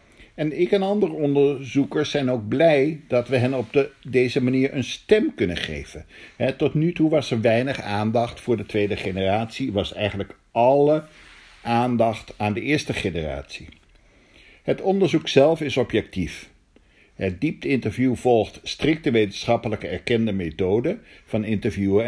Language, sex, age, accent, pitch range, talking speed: English, male, 60-79, Dutch, 105-140 Hz, 140 wpm